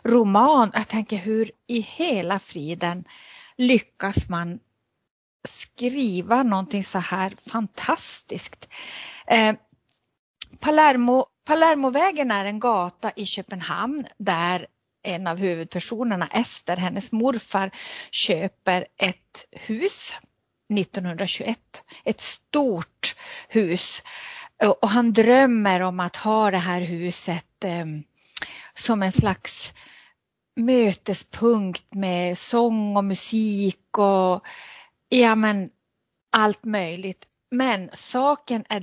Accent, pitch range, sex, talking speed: native, 185-245 Hz, female, 85 wpm